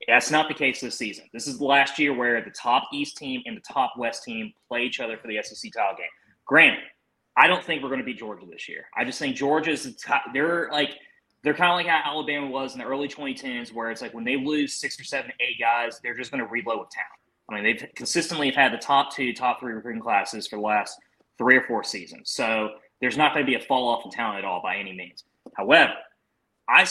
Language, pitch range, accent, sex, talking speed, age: English, 120-165 Hz, American, male, 250 wpm, 20-39